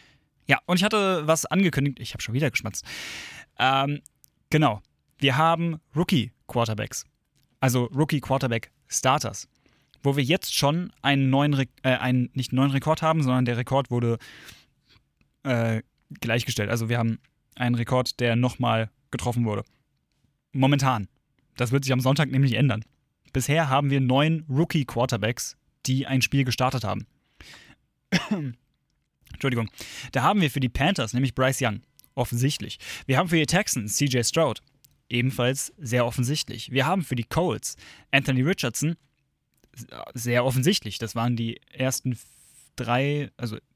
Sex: male